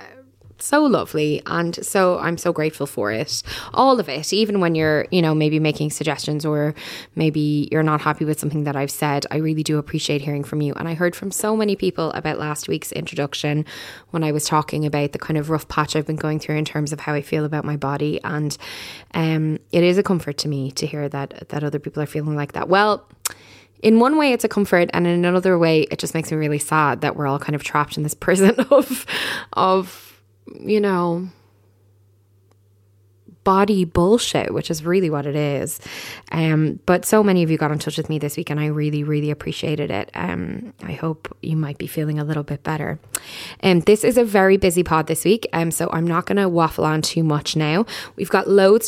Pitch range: 150-180 Hz